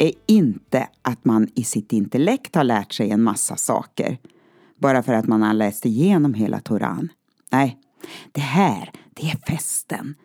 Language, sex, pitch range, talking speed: Swedish, female, 115-195 Hz, 165 wpm